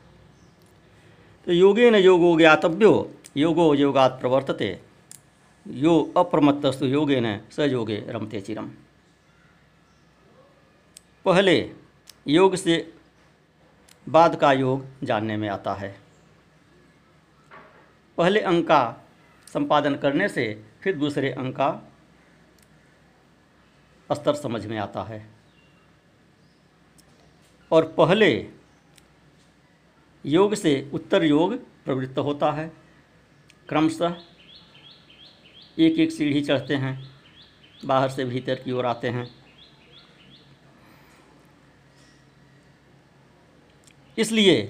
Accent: native